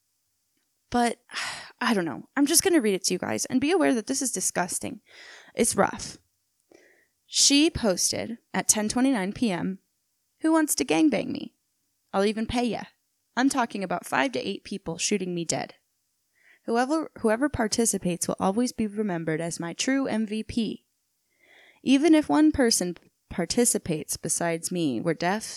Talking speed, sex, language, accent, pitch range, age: 155 wpm, female, English, American, 180-265 Hz, 10-29